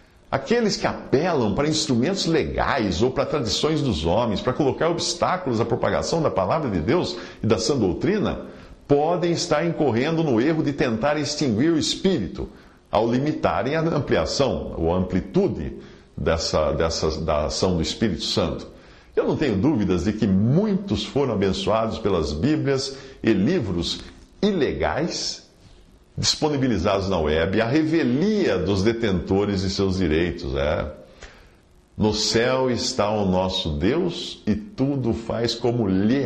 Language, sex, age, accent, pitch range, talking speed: Portuguese, male, 60-79, Brazilian, 90-140 Hz, 135 wpm